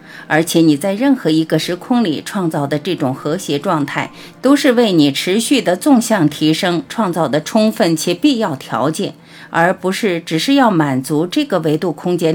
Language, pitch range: Chinese, 155-230 Hz